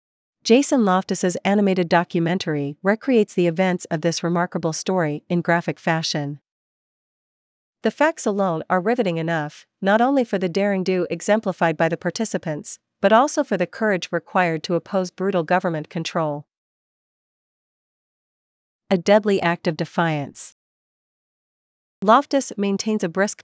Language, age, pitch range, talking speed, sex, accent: English, 40-59, 165-200 Hz, 130 wpm, female, American